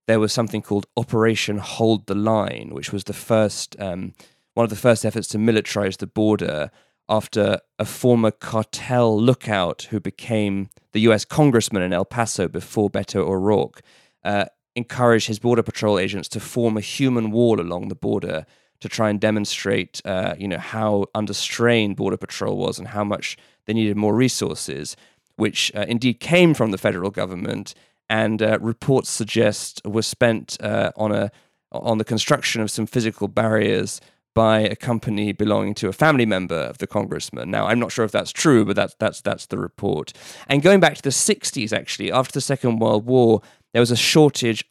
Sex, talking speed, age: male, 185 wpm, 20-39